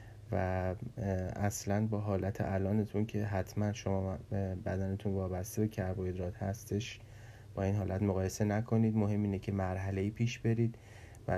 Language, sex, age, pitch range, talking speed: Persian, male, 30-49, 95-110 Hz, 135 wpm